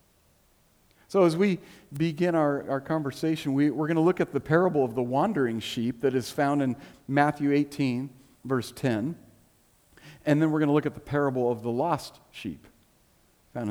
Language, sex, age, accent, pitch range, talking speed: English, male, 50-69, American, 115-155 Hz, 180 wpm